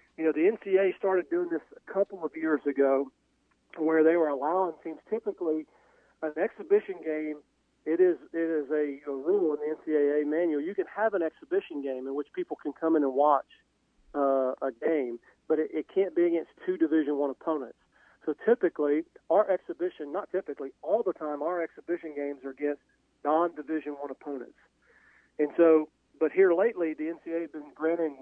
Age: 40-59